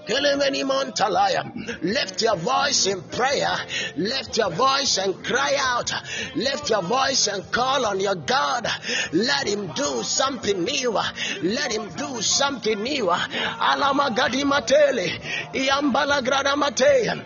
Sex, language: male, English